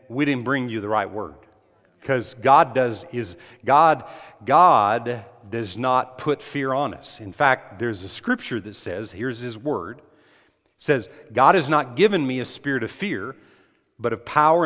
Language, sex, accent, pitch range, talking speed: English, male, American, 125-170 Hz, 165 wpm